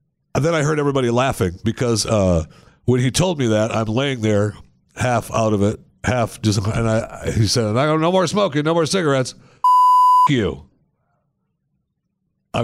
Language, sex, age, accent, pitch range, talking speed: English, male, 60-79, American, 95-125 Hz, 175 wpm